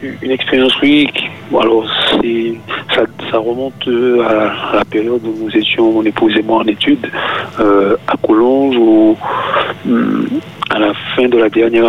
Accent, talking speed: French, 155 wpm